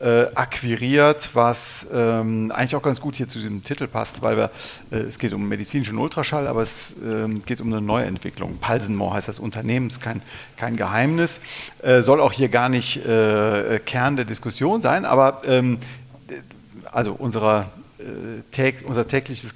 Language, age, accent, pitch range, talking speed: German, 40-59, German, 115-145 Hz, 165 wpm